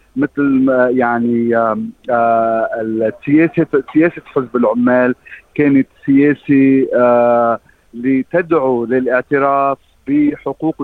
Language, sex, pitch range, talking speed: Arabic, male, 130-155 Hz, 60 wpm